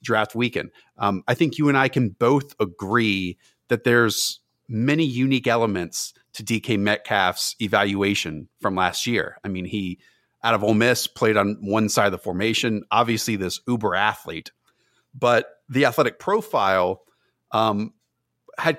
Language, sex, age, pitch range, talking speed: English, male, 40-59, 110-145 Hz, 150 wpm